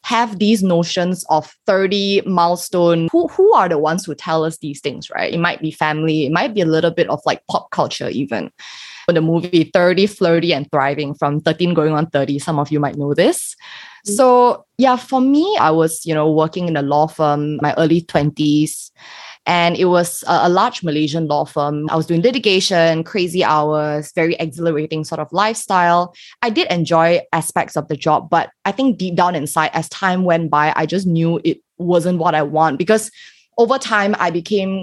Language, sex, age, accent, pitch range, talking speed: English, female, 20-39, Malaysian, 155-195 Hz, 200 wpm